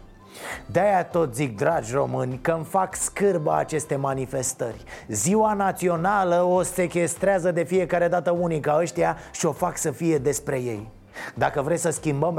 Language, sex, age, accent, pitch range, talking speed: Romanian, male, 30-49, native, 145-180 Hz, 155 wpm